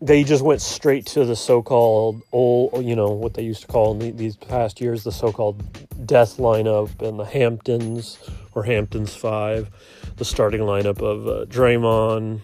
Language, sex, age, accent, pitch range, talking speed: English, male, 30-49, American, 110-135 Hz, 170 wpm